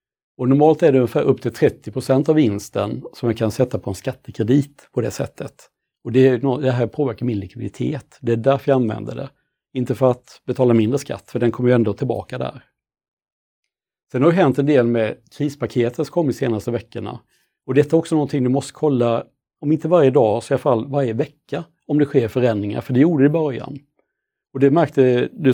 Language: Swedish